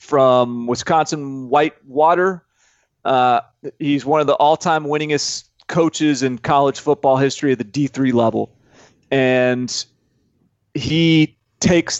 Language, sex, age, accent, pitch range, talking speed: English, male, 30-49, American, 125-155 Hz, 115 wpm